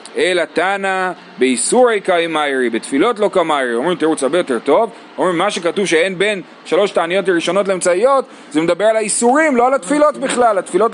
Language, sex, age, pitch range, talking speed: Hebrew, male, 30-49, 155-225 Hz, 165 wpm